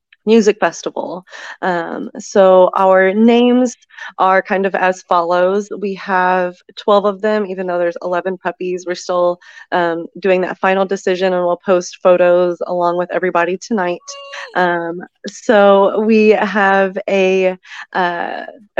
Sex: female